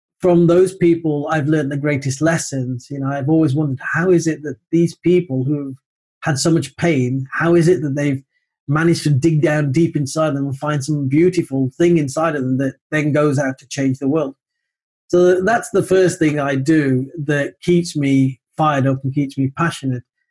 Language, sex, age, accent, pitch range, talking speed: English, male, 40-59, British, 140-165 Hz, 200 wpm